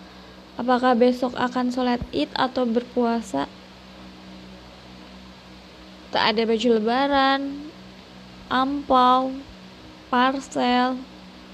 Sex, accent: female, native